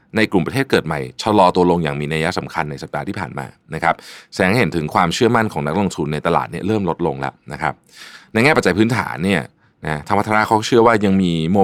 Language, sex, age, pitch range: Thai, male, 20-39, 85-110 Hz